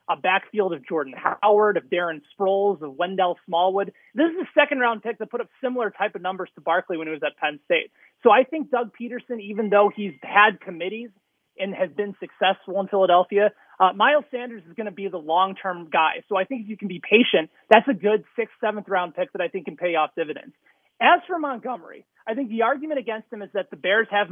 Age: 30-49